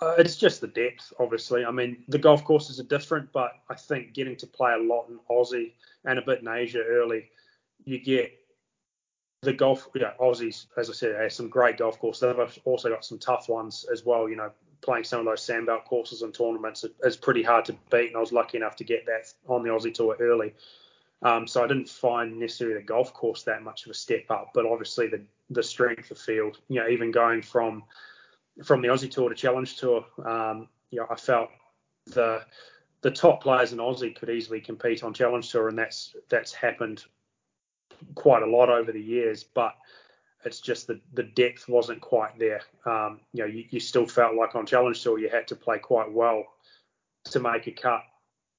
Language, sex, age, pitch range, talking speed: English, male, 20-39, 115-125 Hz, 210 wpm